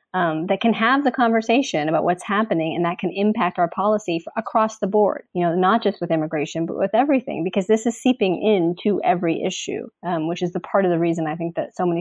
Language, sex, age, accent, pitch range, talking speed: English, female, 30-49, American, 175-215 Hz, 235 wpm